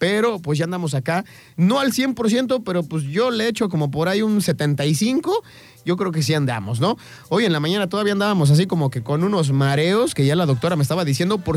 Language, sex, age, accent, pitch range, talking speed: Spanish, male, 30-49, Mexican, 140-200 Hz, 230 wpm